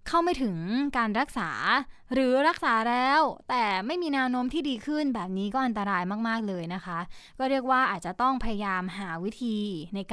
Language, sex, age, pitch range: Thai, female, 20-39, 195-270 Hz